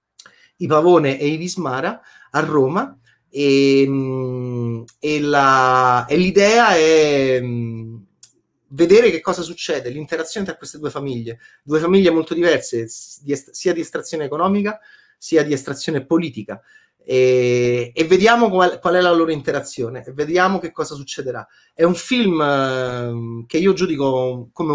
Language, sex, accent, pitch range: Italian, male, native, 125-170 Hz